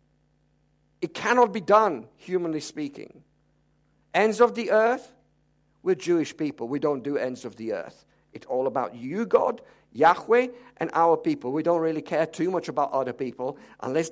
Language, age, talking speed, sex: English, 50-69, 165 wpm, male